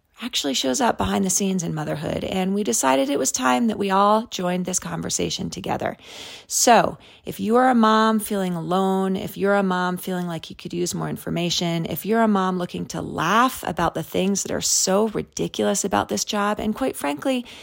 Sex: female